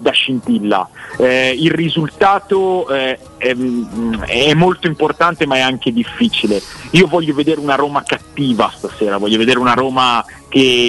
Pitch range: 115-145 Hz